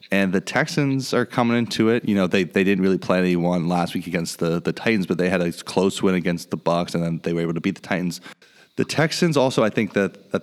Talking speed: 270 wpm